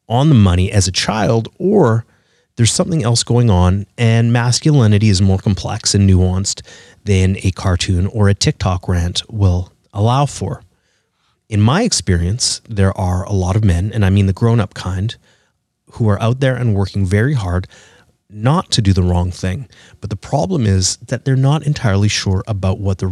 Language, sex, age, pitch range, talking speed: English, male, 30-49, 95-120 Hz, 185 wpm